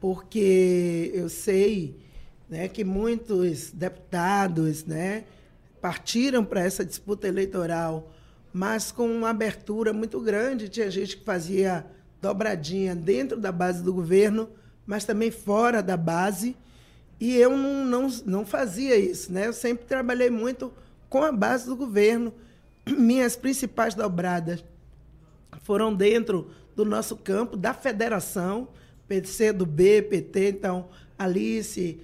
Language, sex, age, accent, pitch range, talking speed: Portuguese, male, 20-39, Brazilian, 185-230 Hz, 125 wpm